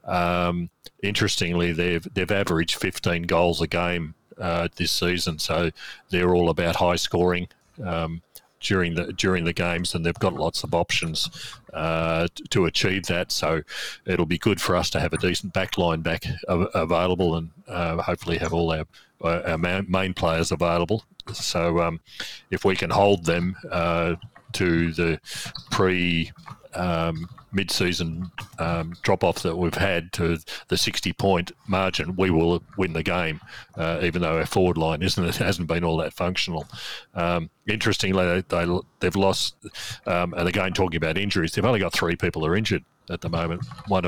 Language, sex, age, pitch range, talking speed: English, male, 40-59, 85-95 Hz, 165 wpm